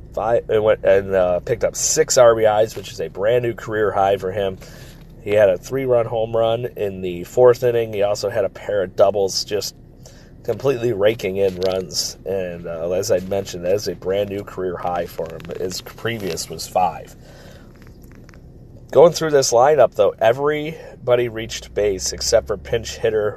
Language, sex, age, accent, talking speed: English, male, 30-49, American, 170 wpm